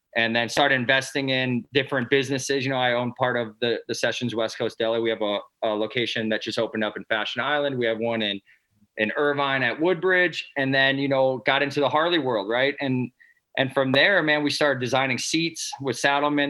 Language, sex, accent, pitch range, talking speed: English, male, American, 115-150 Hz, 220 wpm